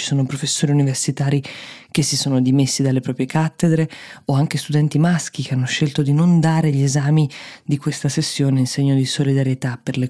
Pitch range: 130-150 Hz